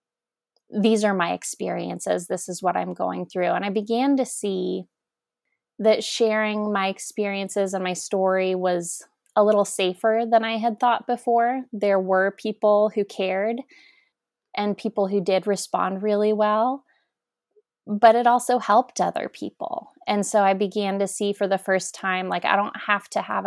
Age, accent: 20-39, American